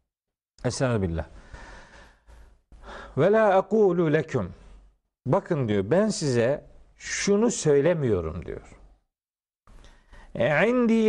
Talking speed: 60 wpm